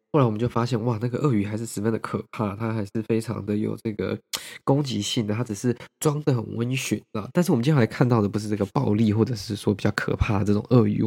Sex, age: male, 20-39